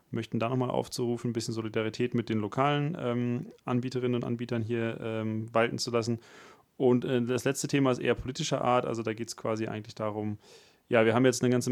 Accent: German